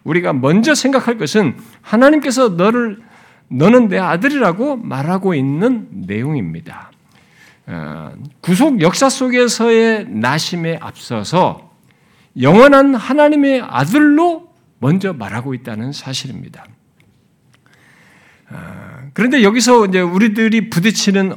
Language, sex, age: Korean, male, 50-69